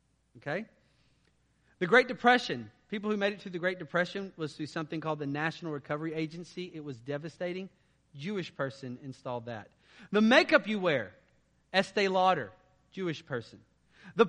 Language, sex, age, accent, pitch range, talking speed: English, male, 40-59, American, 155-225 Hz, 150 wpm